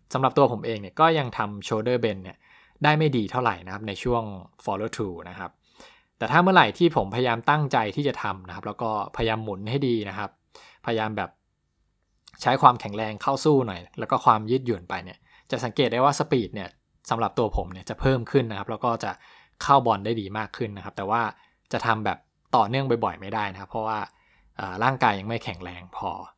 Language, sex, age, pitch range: English, male, 20-39, 100-125 Hz